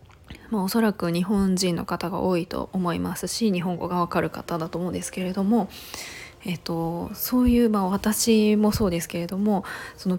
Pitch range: 180-225 Hz